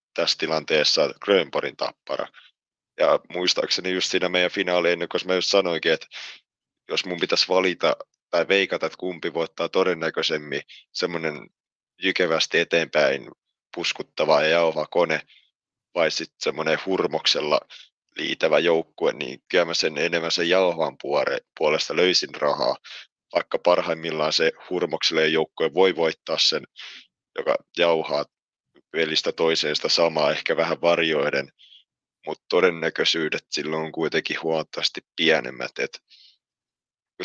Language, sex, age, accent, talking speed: Finnish, male, 30-49, native, 120 wpm